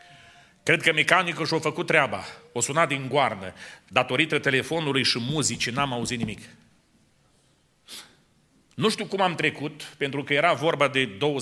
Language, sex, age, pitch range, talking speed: Romanian, male, 40-59, 130-160 Hz, 150 wpm